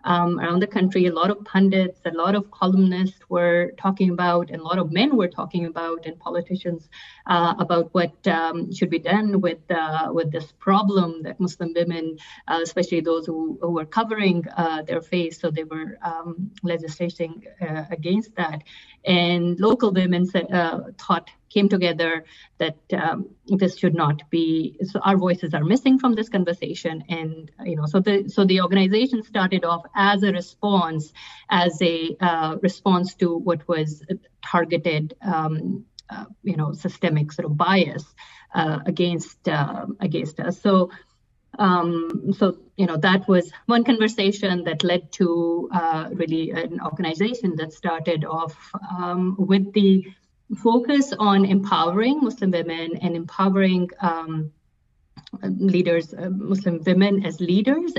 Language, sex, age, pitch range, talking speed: English, female, 30-49, 165-195 Hz, 155 wpm